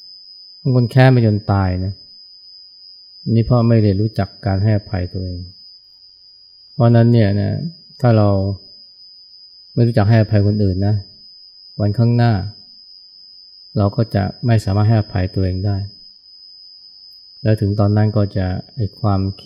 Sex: male